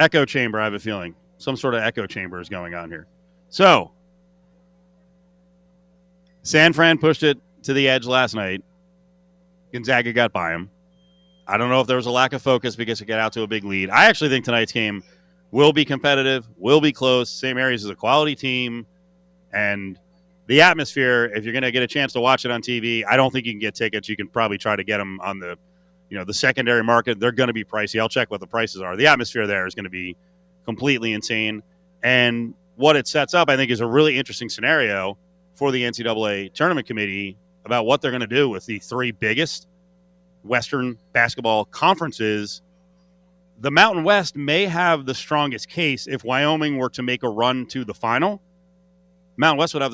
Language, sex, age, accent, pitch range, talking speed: English, male, 30-49, American, 110-160 Hz, 205 wpm